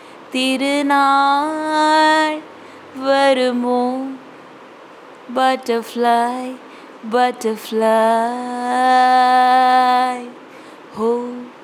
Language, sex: Tamil, female